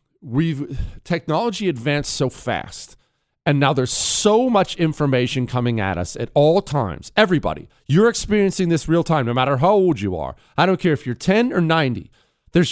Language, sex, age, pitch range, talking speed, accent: English, male, 40-59, 125-185 Hz, 180 wpm, American